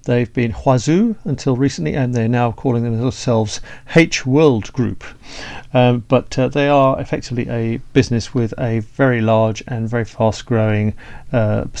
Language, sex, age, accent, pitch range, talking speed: English, male, 40-59, British, 110-135 Hz, 145 wpm